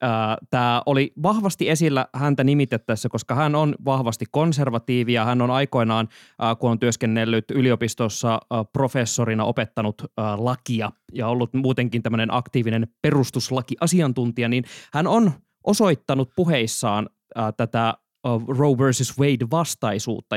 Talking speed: 115 wpm